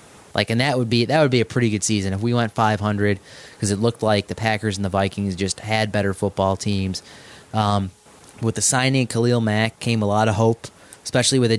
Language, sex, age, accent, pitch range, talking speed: English, male, 20-39, American, 100-115 Hz, 235 wpm